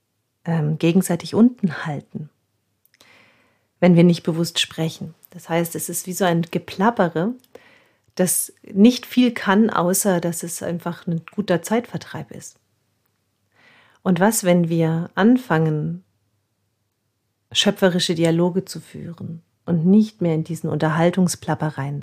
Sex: female